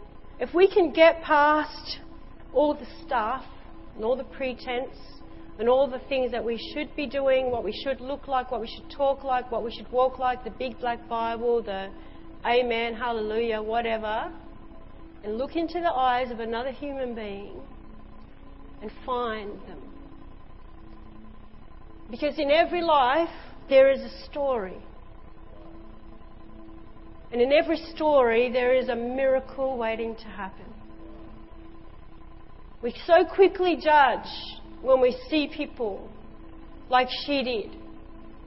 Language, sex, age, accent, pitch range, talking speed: English, female, 40-59, Australian, 225-275 Hz, 135 wpm